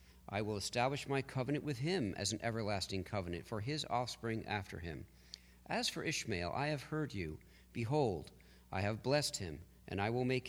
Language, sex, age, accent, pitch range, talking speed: English, male, 50-69, American, 95-125 Hz, 185 wpm